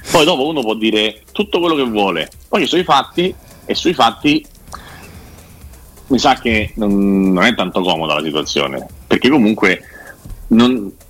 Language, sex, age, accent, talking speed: Italian, male, 40-59, native, 160 wpm